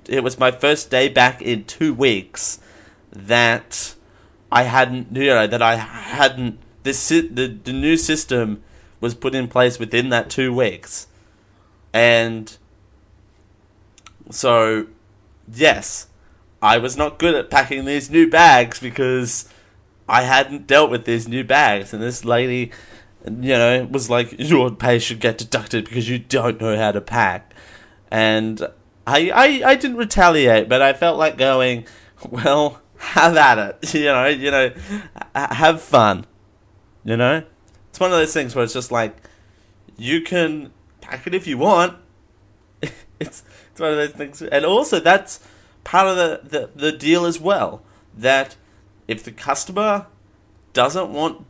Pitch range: 105-140 Hz